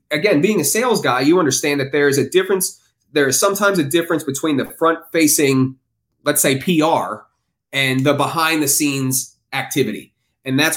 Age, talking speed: 30-49, 160 wpm